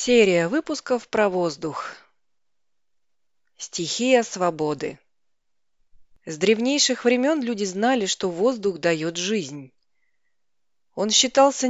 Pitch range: 170-245 Hz